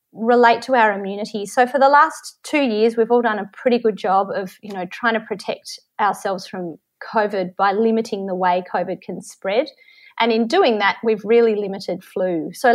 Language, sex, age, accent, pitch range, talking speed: English, female, 30-49, Australian, 200-265 Hz, 200 wpm